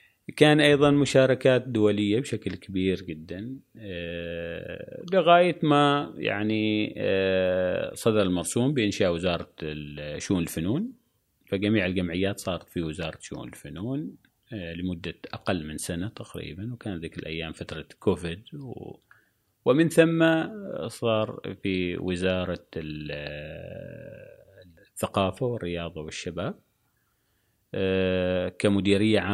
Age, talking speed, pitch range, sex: 30-49, 95 wpm, 85-115 Hz, male